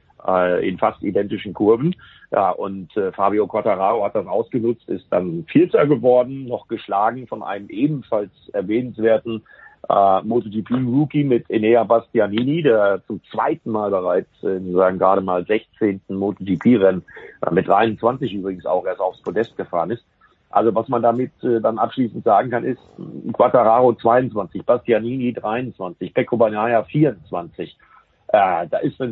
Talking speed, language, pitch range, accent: 140 wpm, German, 105-135 Hz, German